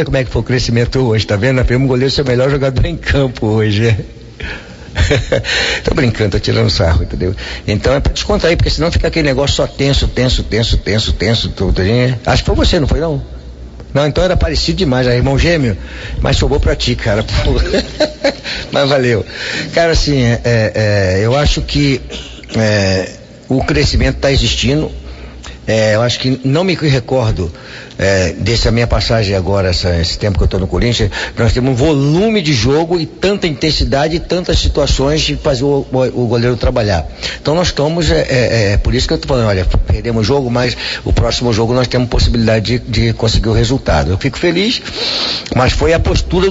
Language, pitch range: Portuguese, 105-135 Hz